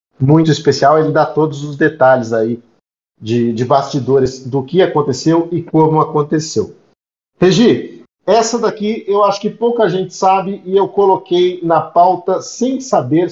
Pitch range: 130-170 Hz